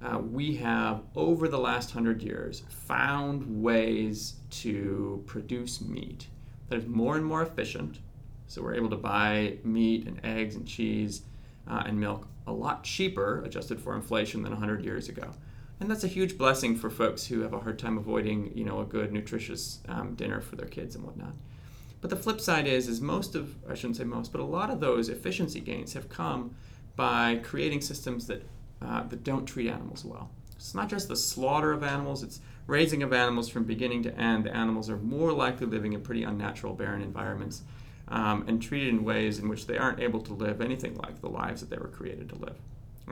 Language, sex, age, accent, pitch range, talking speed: English, male, 30-49, American, 110-130 Hz, 205 wpm